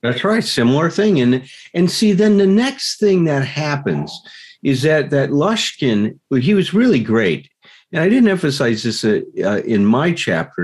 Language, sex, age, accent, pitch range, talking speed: English, male, 50-69, American, 115-170 Hz, 175 wpm